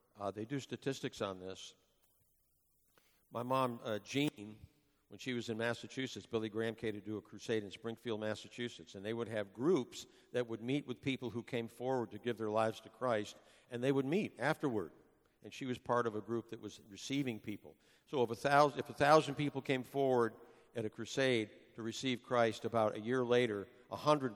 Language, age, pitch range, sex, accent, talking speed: English, 50-69, 105-125 Hz, male, American, 190 wpm